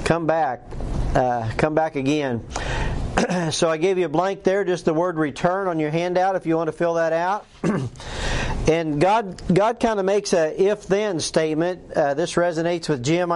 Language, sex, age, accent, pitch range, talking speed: English, male, 40-59, American, 150-185 Hz, 185 wpm